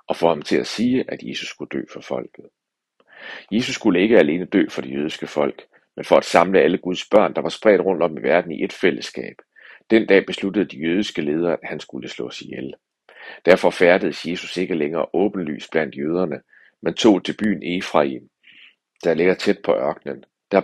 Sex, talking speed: male, 200 wpm